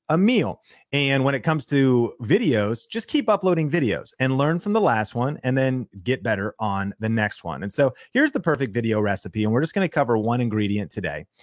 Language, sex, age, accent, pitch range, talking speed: English, male, 30-49, American, 110-150 Hz, 220 wpm